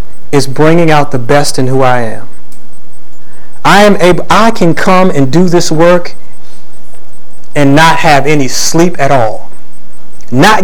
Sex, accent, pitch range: male, American, 135-180 Hz